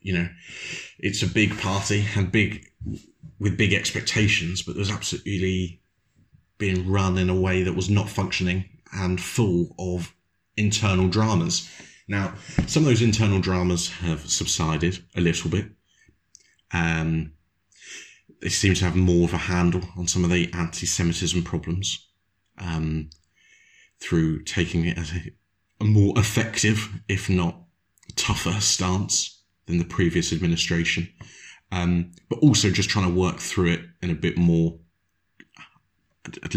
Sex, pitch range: male, 85-100 Hz